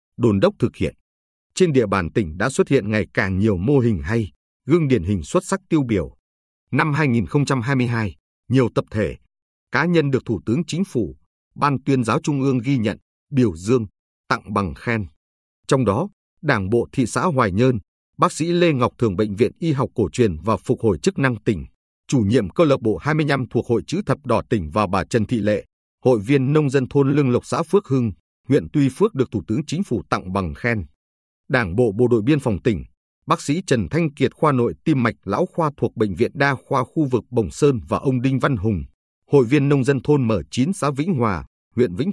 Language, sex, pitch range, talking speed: Vietnamese, male, 105-145 Hz, 220 wpm